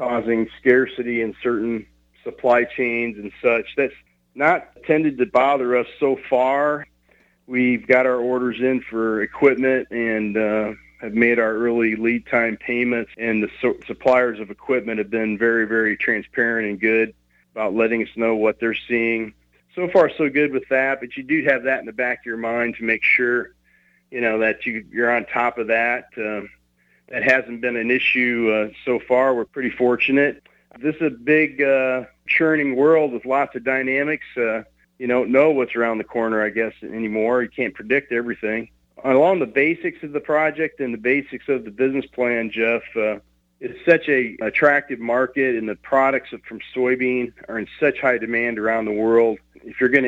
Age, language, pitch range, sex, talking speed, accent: 40-59, English, 110-130 Hz, male, 185 wpm, American